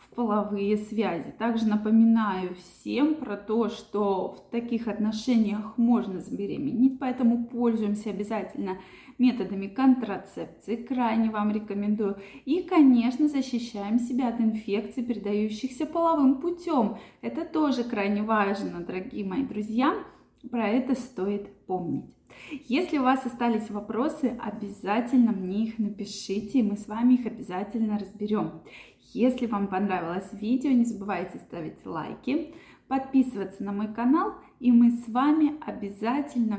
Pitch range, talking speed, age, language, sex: 205-255 Hz, 120 wpm, 20-39, Russian, female